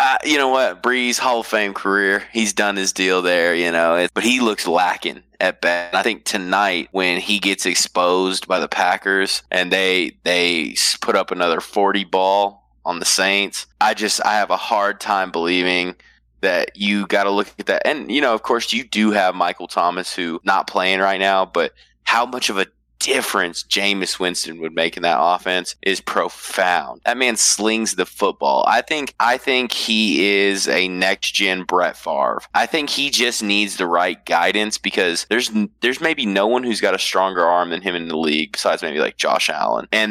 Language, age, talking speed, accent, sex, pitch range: English, 20-39, 200 wpm, American, male, 90-105 Hz